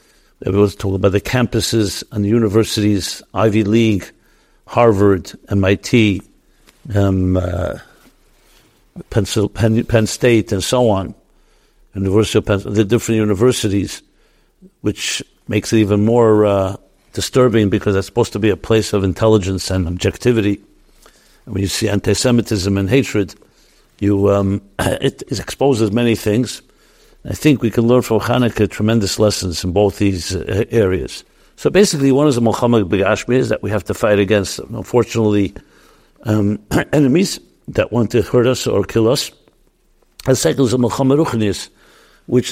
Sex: male